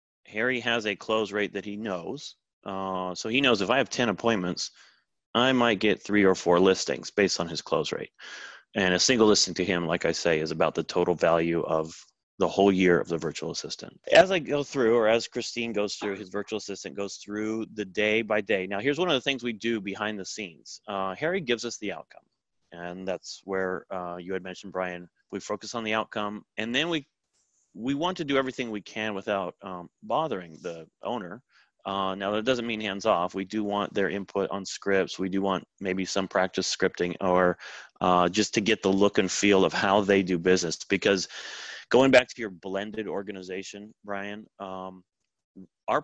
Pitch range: 95-110 Hz